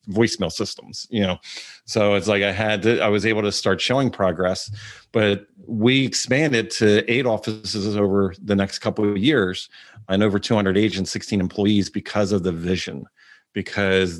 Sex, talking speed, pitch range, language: male, 170 wpm, 100-120 Hz, English